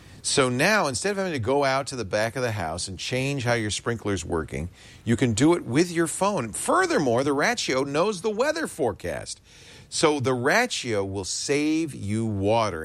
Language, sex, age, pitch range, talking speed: English, male, 40-59, 100-140 Hz, 190 wpm